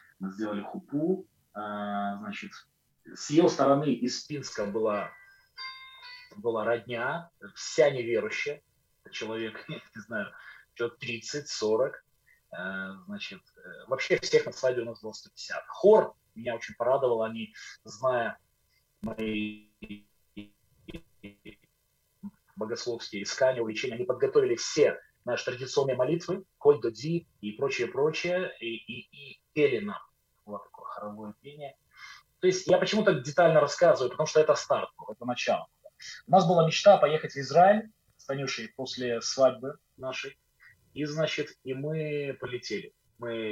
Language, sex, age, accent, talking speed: Ukrainian, male, 30-49, native, 115 wpm